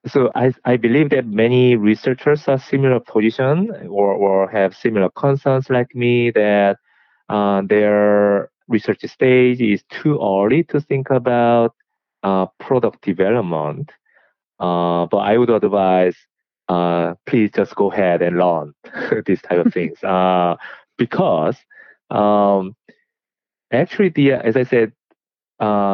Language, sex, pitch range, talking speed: English, male, 90-120 Hz, 130 wpm